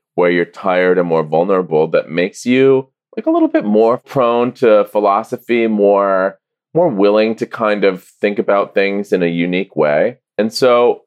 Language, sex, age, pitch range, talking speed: English, male, 20-39, 90-140 Hz, 175 wpm